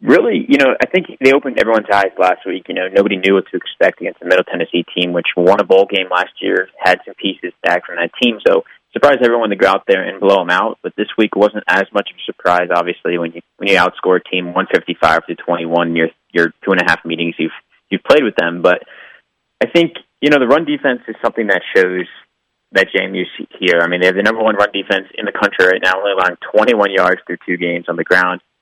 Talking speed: 240 wpm